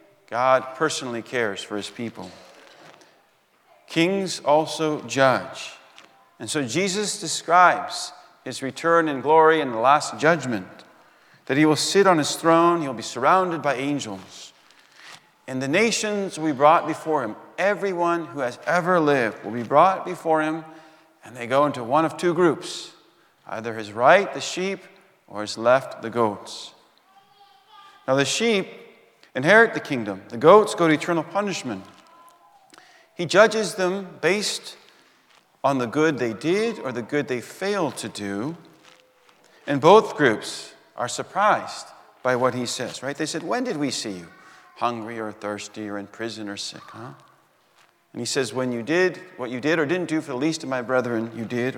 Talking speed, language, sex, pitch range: 165 wpm, English, male, 120-180 Hz